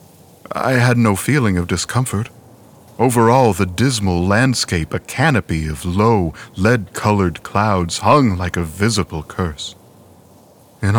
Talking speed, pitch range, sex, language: 120 wpm, 90-110 Hz, male, English